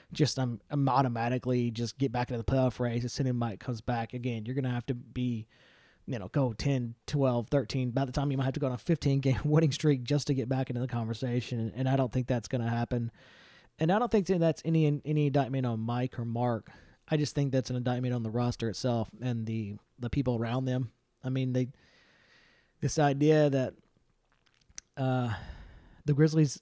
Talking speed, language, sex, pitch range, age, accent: 210 wpm, English, male, 120-145 Hz, 30-49, American